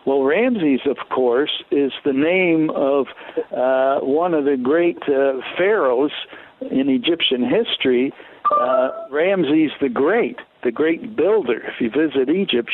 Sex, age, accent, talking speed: male, 60-79, American, 135 wpm